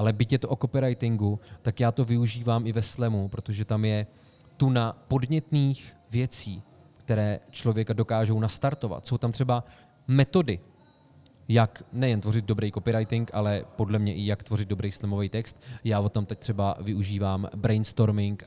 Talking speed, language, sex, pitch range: 160 wpm, Czech, male, 110-135 Hz